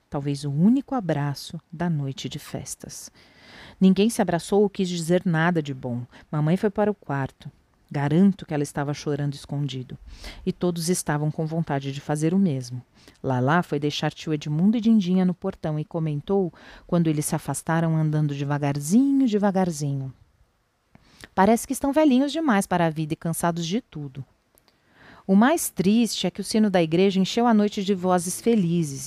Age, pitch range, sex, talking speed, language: 40-59, 145-195 Hz, female, 170 wpm, Portuguese